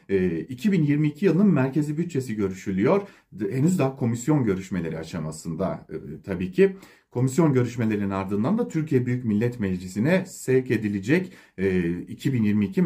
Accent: Turkish